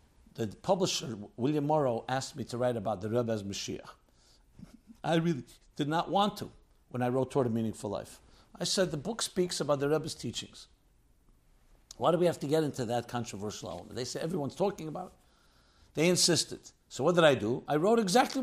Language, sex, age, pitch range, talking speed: English, male, 60-79, 115-180 Hz, 200 wpm